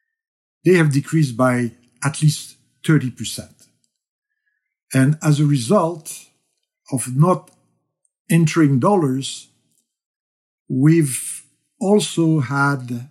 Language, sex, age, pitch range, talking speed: English, male, 50-69, 130-165 Hz, 80 wpm